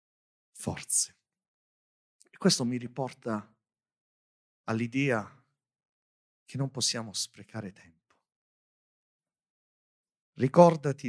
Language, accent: Italian, native